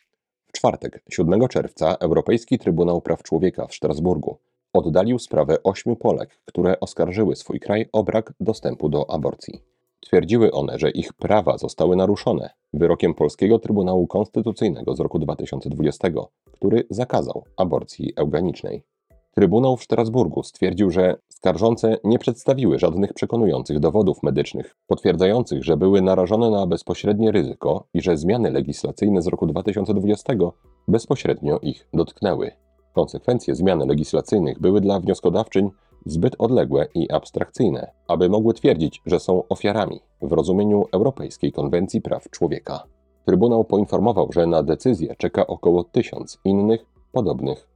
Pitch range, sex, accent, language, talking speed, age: 85-110 Hz, male, native, Polish, 125 wpm, 40-59